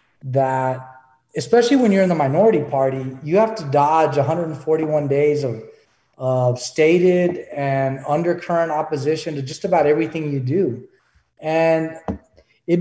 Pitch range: 145-185 Hz